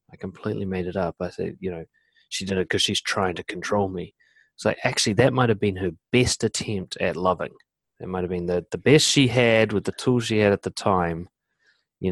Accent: Australian